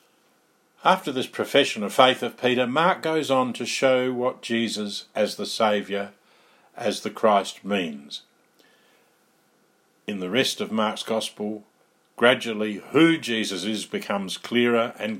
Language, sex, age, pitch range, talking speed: English, male, 50-69, 105-135 Hz, 135 wpm